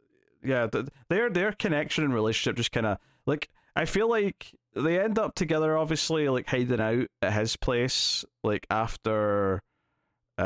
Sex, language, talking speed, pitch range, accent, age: male, English, 160 wpm, 105-130 Hz, British, 30-49